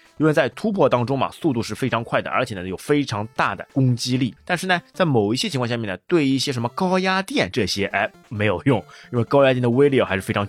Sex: male